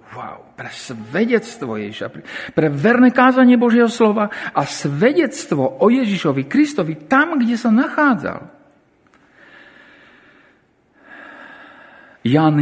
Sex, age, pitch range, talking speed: male, 50-69, 155-235 Hz, 85 wpm